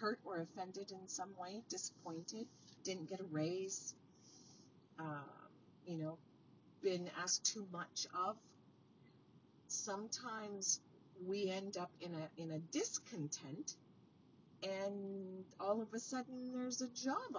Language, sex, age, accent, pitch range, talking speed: English, female, 40-59, American, 165-245 Hz, 120 wpm